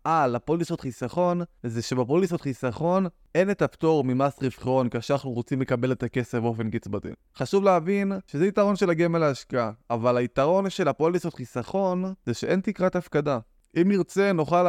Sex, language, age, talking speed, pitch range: male, Hebrew, 20-39, 155 wpm, 135-180 Hz